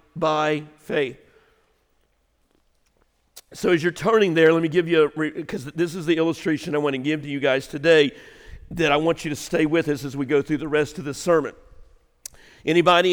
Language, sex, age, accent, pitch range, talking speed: English, male, 50-69, American, 150-170 Hz, 185 wpm